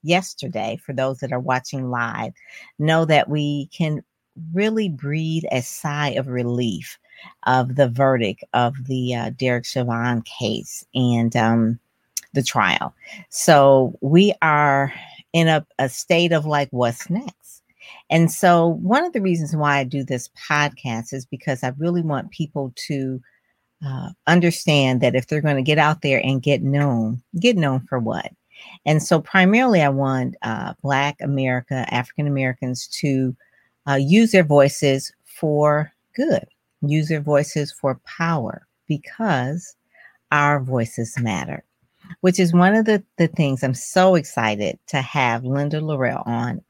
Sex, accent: female, American